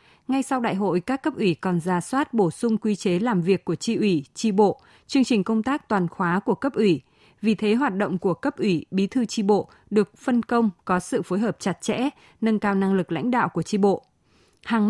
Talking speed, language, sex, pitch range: 240 wpm, Vietnamese, female, 185-230 Hz